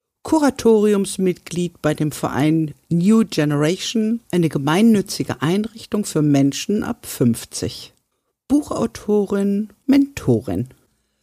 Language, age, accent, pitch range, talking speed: German, 50-69, German, 155-210 Hz, 80 wpm